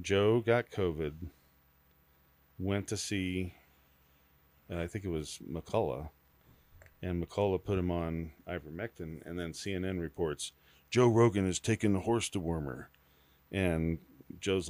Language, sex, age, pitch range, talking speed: English, male, 40-59, 70-95 Hz, 130 wpm